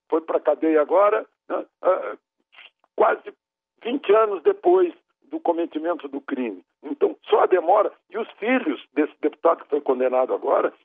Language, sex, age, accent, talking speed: Portuguese, male, 60-79, Brazilian, 145 wpm